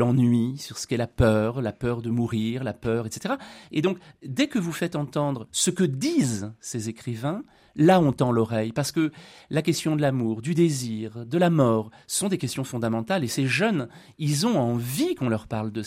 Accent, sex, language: French, male, French